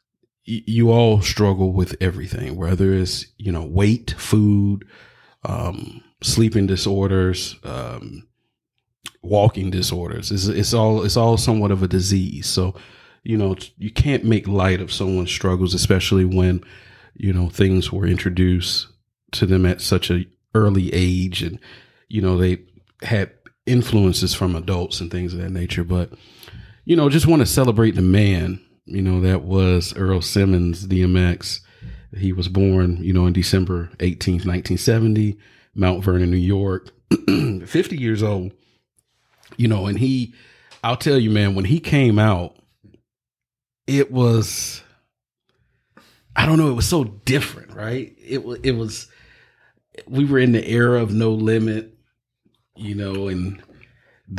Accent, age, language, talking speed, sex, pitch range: American, 40-59, English, 145 wpm, male, 90-115 Hz